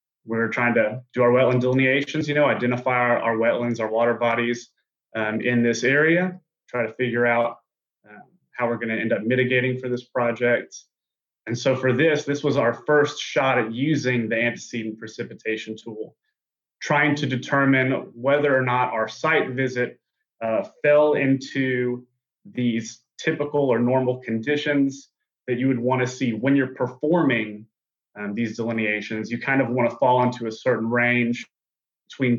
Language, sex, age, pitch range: English, male, 30-49, 115-130 Hz